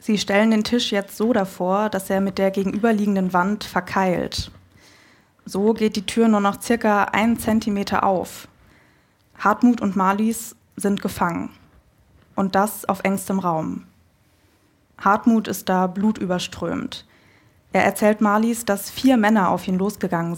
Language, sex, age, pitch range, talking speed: German, female, 20-39, 180-215 Hz, 140 wpm